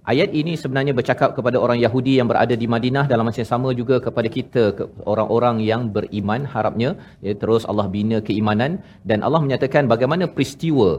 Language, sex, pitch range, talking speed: Malayalam, male, 110-140 Hz, 180 wpm